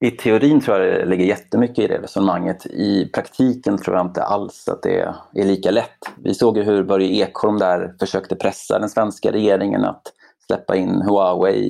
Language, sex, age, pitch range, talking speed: Swedish, male, 30-49, 95-130 Hz, 190 wpm